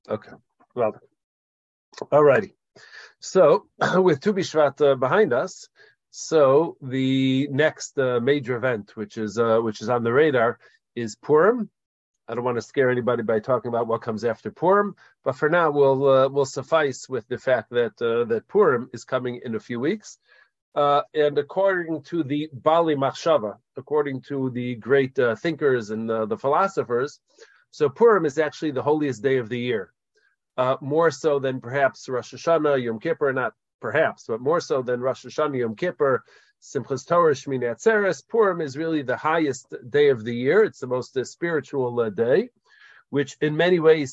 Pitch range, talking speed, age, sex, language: 125-160 Hz, 175 wpm, 40-59, male, English